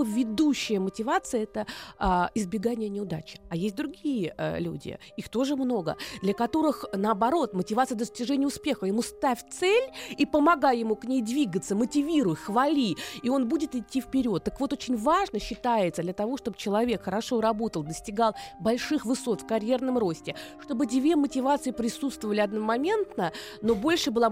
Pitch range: 215-280 Hz